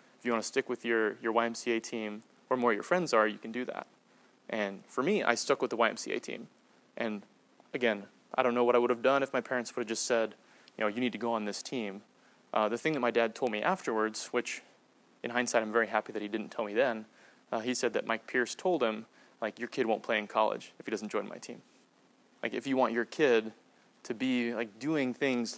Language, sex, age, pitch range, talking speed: English, male, 20-39, 110-125 Hz, 250 wpm